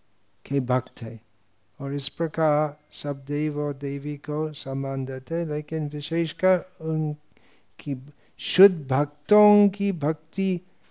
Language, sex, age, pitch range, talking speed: Hindi, male, 50-69, 125-180 Hz, 115 wpm